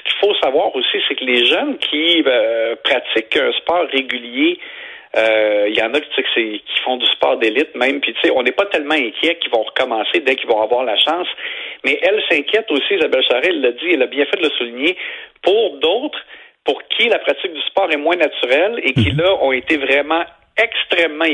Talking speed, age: 220 wpm, 50-69